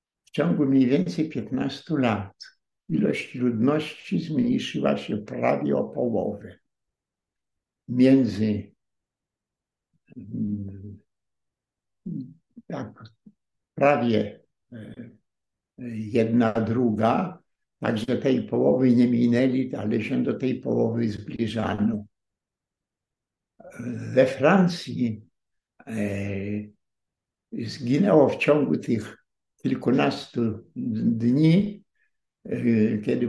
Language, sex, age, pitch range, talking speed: Polish, male, 60-79, 110-160 Hz, 70 wpm